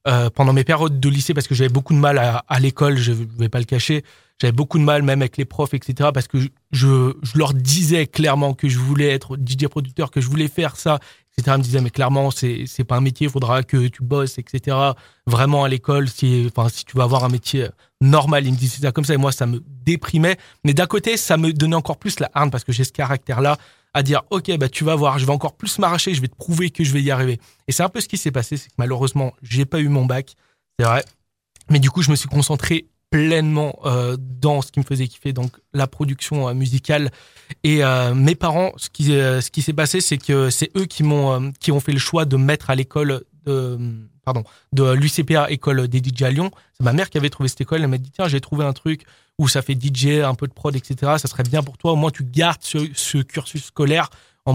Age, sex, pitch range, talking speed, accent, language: 20-39, male, 130-150 Hz, 255 wpm, French, French